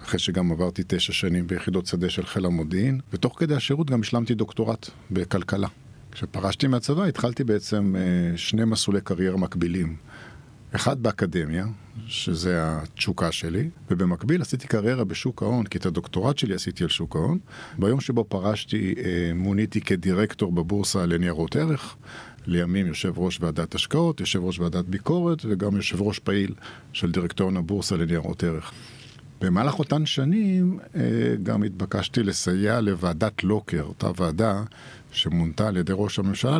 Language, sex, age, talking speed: Hebrew, male, 50-69, 135 wpm